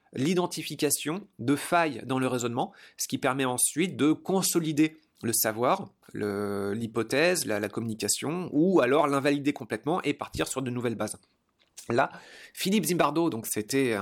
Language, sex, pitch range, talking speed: French, male, 120-165 Hz, 145 wpm